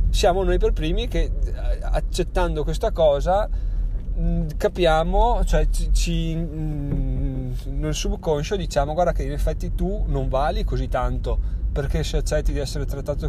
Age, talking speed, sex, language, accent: 30-49, 135 wpm, male, Italian, native